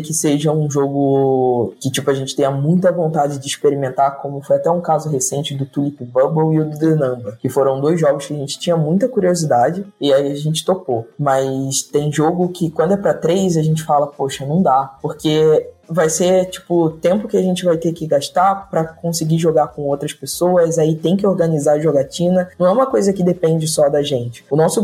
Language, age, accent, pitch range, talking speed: Portuguese, 20-39, Brazilian, 145-185 Hz, 220 wpm